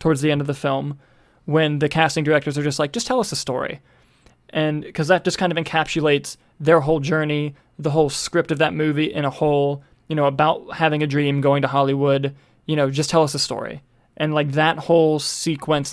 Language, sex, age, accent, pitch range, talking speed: English, male, 20-39, American, 140-160 Hz, 220 wpm